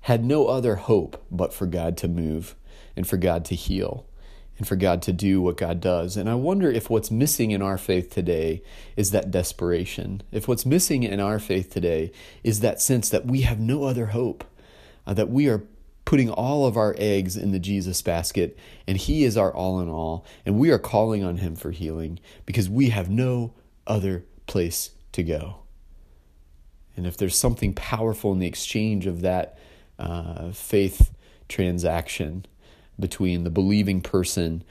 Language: English